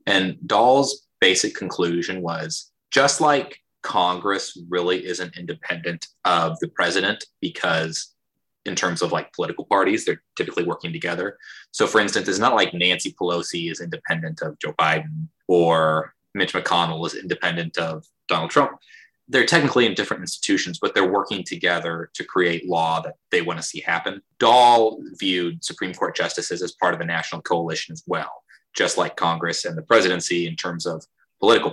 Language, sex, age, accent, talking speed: English, male, 20-39, American, 165 wpm